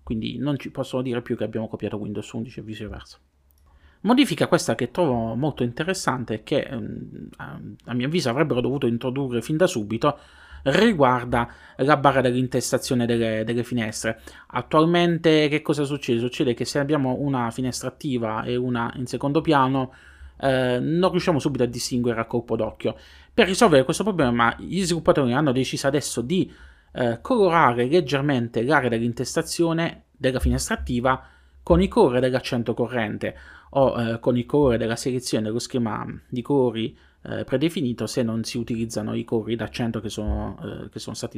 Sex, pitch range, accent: male, 115-145 Hz, native